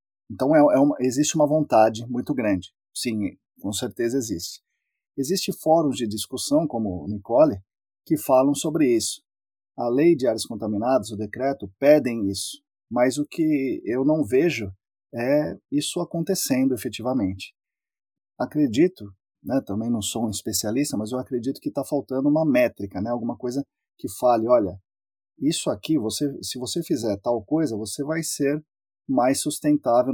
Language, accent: Portuguese, Brazilian